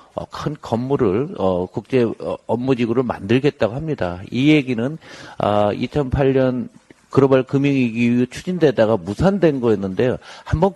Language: English